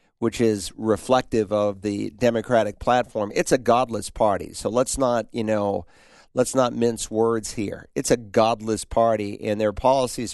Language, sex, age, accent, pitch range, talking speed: English, male, 50-69, American, 105-120 Hz, 165 wpm